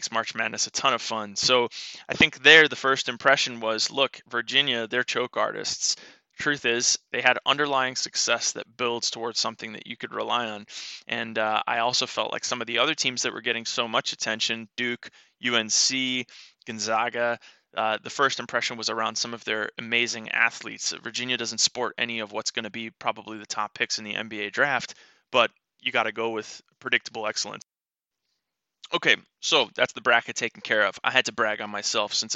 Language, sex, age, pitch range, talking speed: English, male, 20-39, 110-125 Hz, 195 wpm